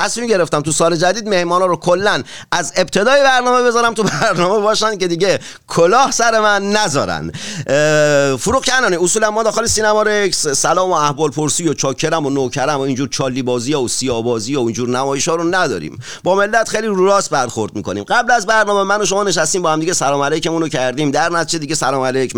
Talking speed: 200 wpm